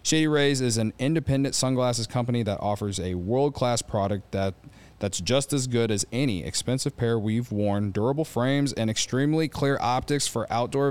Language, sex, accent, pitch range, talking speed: English, male, American, 105-140 Hz, 165 wpm